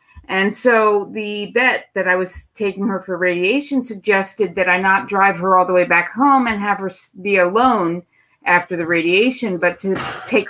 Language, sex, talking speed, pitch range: English, female, 190 wpm, 185-240 Hz